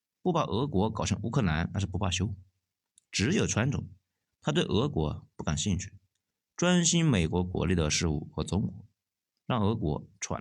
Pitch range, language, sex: 95-125 Hz, Chinese, male